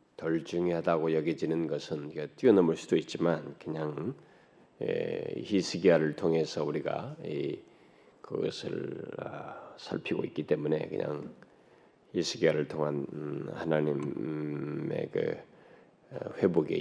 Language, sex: Korean, male